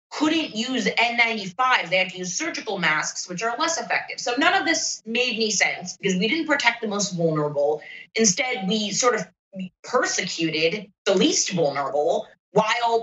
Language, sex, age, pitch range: English, female, 30-49, 170-235 Hz